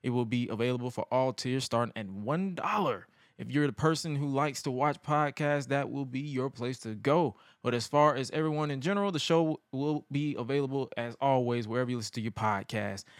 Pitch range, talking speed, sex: 125-150 Hz, 210 wpm, male